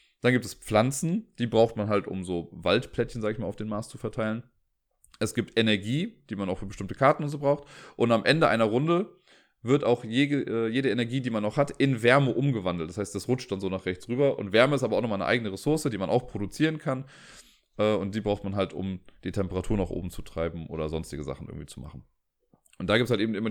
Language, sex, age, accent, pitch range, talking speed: German, male, 30-49, German, 95-125 Hz, 245 wpm